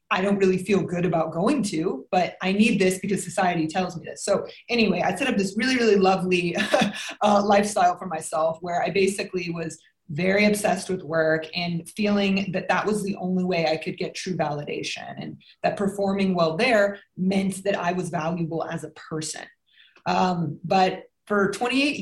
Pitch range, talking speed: 175-210 Hz, 185 wpm